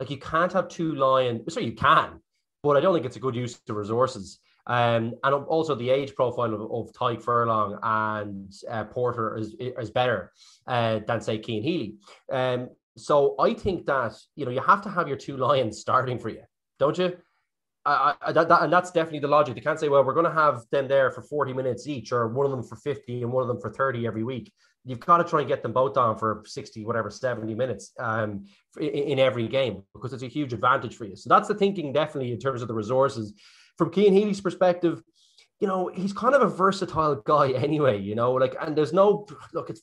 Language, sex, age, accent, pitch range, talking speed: English, male, 20-39, Irish, 120-160 Hz, 230 wpm